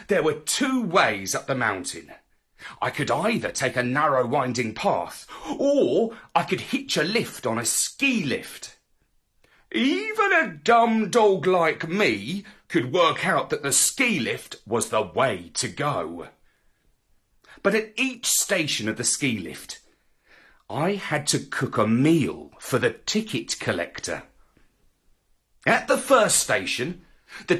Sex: male